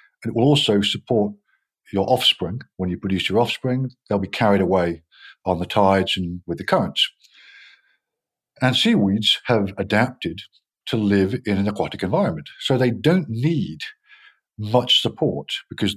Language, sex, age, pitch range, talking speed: English, male, 50-69, 95-125 Hz, 150 wpm